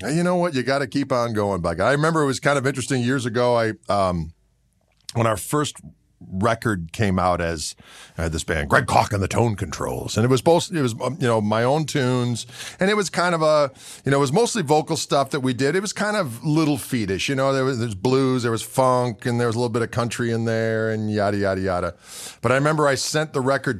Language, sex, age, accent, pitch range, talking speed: English, male, 40-59, American, 115-150 Hz, 255 wpm